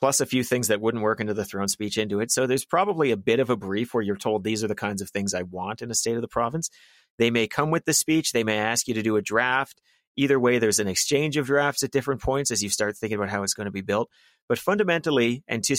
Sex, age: male, 30-49